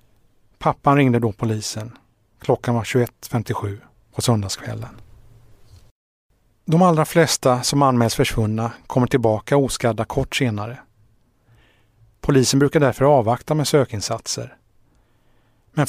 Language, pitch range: English, 110-130 Hz